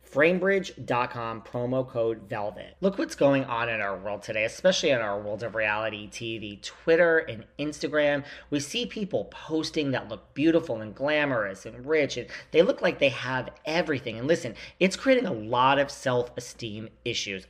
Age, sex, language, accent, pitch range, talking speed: 40-59, male, English, American, 115-160 Hz, 170 wpm